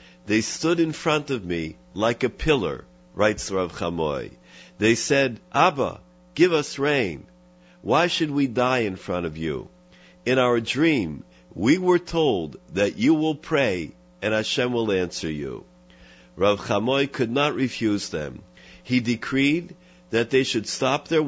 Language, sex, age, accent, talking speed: English, male, 50-69, American, 150 wpm